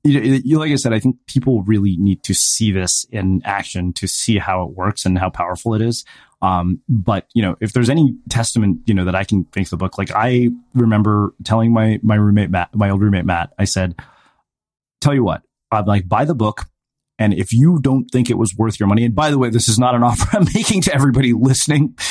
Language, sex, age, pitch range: English, male, 30-49, 100-130 Hz